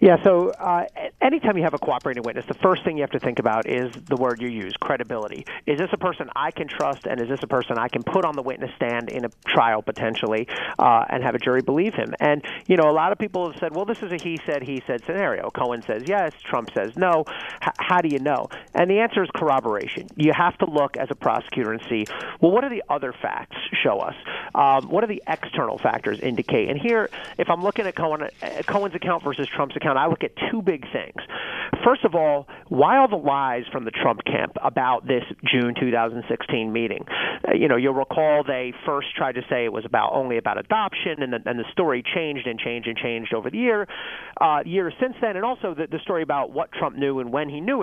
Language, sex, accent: English, male, American